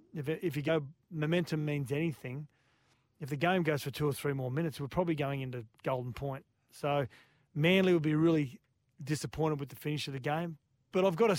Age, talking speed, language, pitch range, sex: 30-49, 200 wpm, English, 135-160 Hz, male